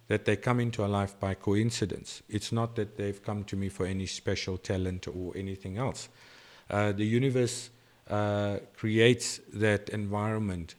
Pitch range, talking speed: 100-115 Hz, 160 wpm